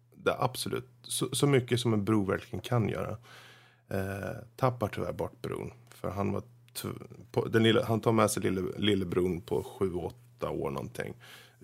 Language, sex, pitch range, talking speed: Swedish, male, 105-125 Hz, 135 wpm